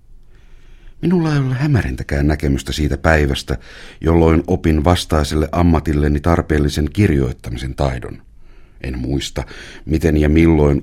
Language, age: Finnish, 60-79